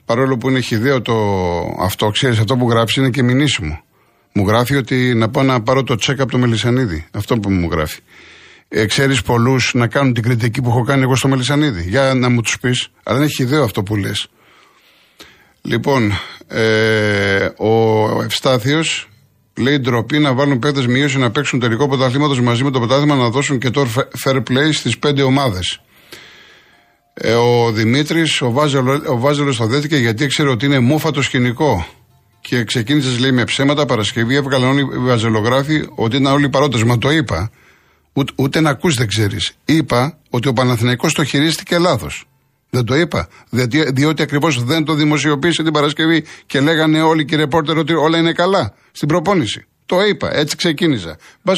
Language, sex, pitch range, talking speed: Greek, male, 120-145 Hz, 180 wpm